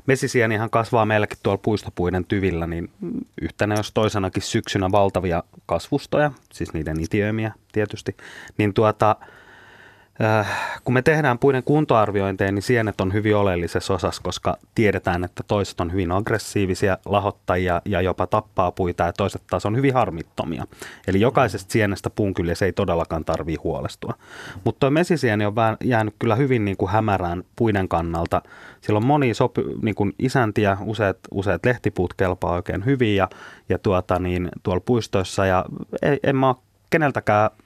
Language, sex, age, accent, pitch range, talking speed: Finnish, male, 30-49, native, 95-115 Hz, 150 wpm